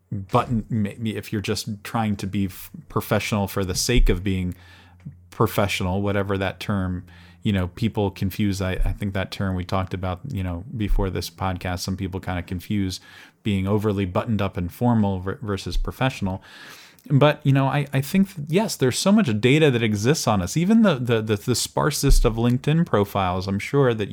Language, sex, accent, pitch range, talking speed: English, male, American, 95-130 Hz, 185 wpm